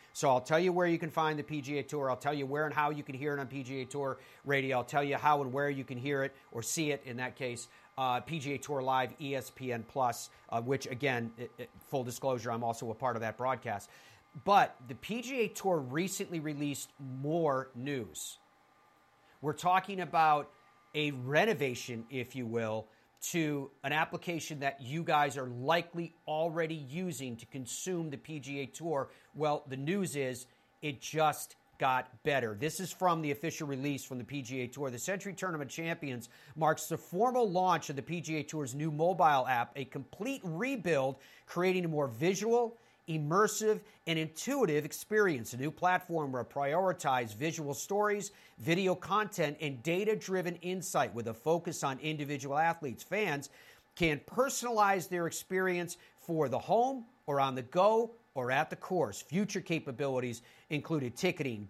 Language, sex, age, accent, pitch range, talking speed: English, male, 40-59, American, 135-170 Hz, 170 wpm